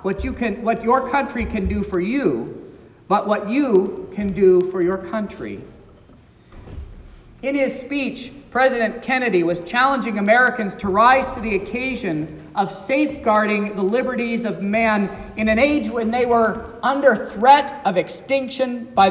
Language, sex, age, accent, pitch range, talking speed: English, male, 40-59, American, 185-250 Hz, 150 wpm